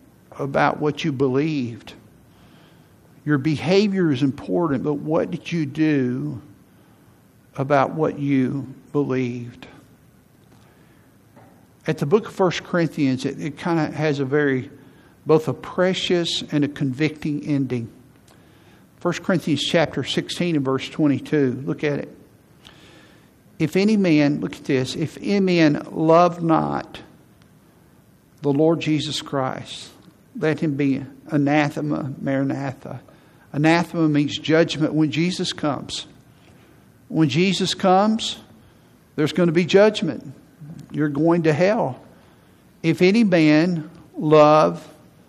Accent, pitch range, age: American, 140-165 Hz, 60-79